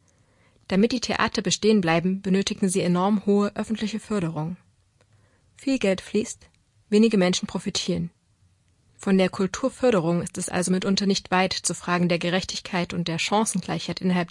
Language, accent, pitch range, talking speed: German, German, 165-205 Hz, 145 wpm